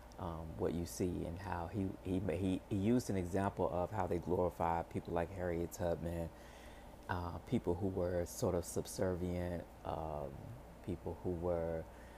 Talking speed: 160 wpm